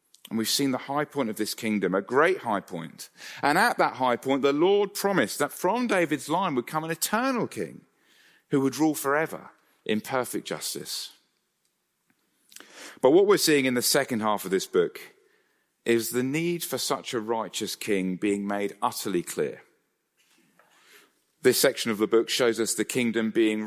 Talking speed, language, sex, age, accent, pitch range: 175 wpm, English, male, 40-59, British, 100-145 Hz